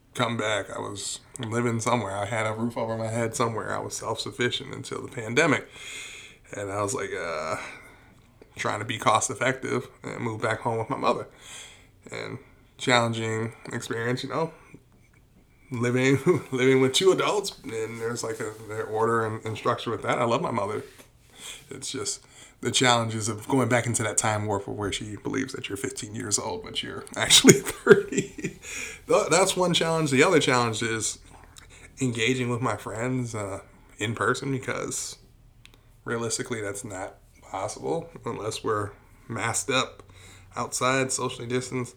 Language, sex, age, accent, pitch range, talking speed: English, male, 20-39, American, 110-125 Hz, 160 wpm